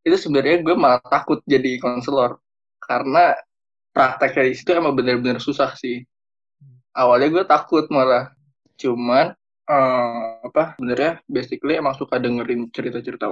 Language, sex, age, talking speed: Indonesian, male, 20-39, 120 wpm